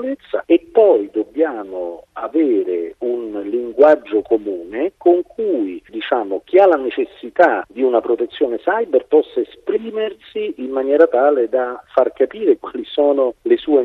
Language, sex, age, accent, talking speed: Italian, male, 50-69, native, 125 wpm